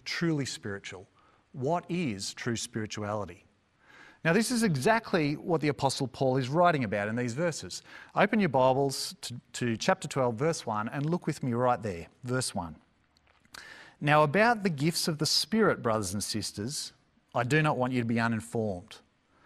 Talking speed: 170 wpm